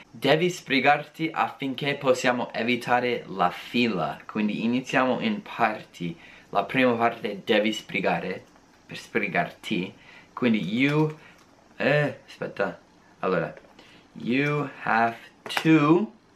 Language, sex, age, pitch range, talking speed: Italian, male, 20-39, 105-140 Hz, 100 wpm